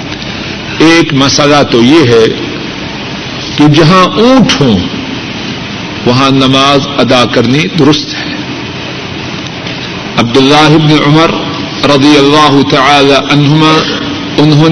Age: 50-69